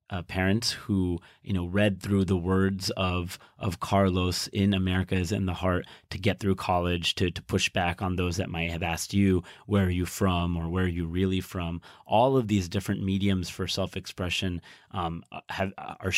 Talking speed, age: 195 wpm, 30-49